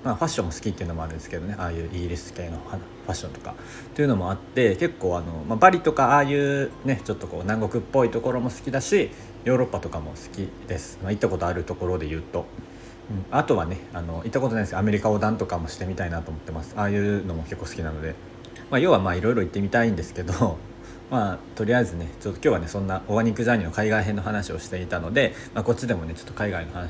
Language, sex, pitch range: Japanese, male, 90-110 Hz